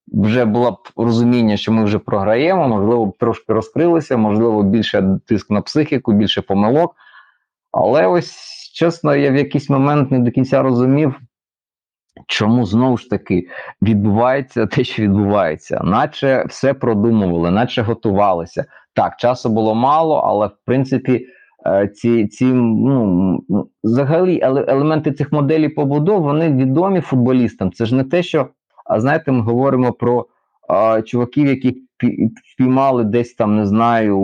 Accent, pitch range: native, 105-130 Hz